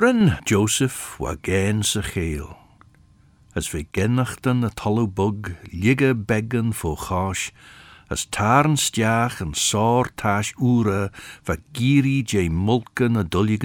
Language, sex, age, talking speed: English, male, 60-79, 135 wpm